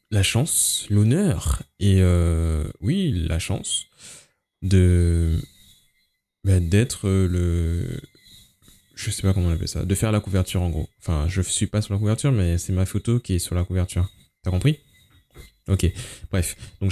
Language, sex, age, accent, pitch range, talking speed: French, male, 20-39, French, 90-120 Hz, 165 wpm